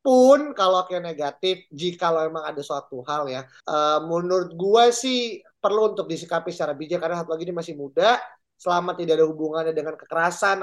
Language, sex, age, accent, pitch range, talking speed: Indonesian, male, 20-39, native, 155-200 Hz, 180 wpm